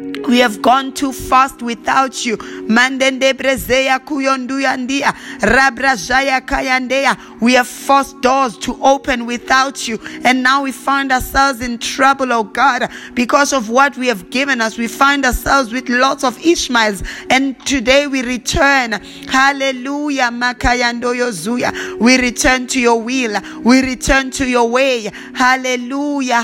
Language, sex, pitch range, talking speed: English, female, 240-270 Hz, 125 wpm